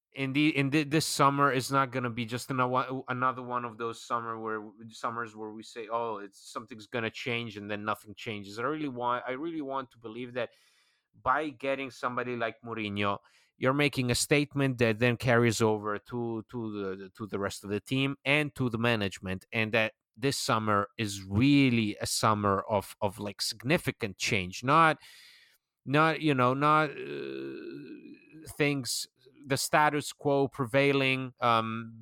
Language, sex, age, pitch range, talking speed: English, male, 30-49, 115-140 Hz, 170 wpm